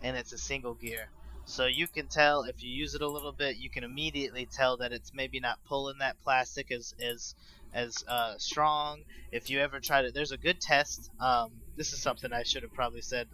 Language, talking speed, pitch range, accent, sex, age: English, 225 wpm, 120-140 Hz, American, male, 20-39